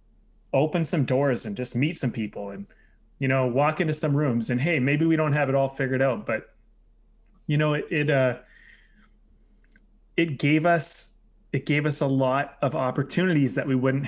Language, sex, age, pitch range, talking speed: English, male, 20-39, 125-150 Hz, 190 wpm